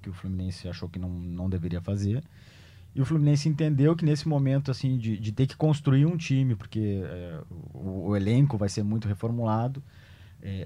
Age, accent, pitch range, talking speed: 20-39, Brazilian, 105-140 Hz, 190 wpm